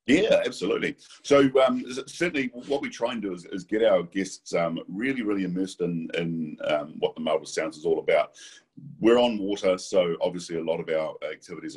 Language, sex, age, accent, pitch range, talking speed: English, male, 40-59, Australian, 85-130 Hz, 200 wpm